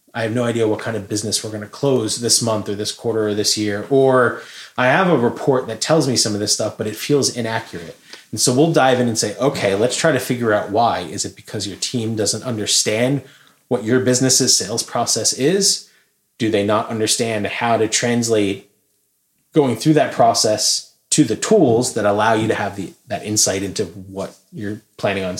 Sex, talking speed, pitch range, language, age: male, 215 wpm, 105-135 Hz, English, 30-49